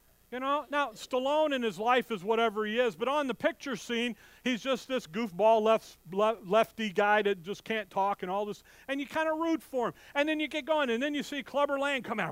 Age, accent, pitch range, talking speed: 40-59, American, 190-275 Hz, 250 wpm